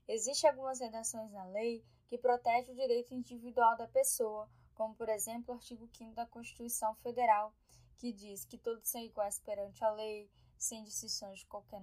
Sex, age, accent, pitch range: female, 10-29, Brazilian, 215-245 Hz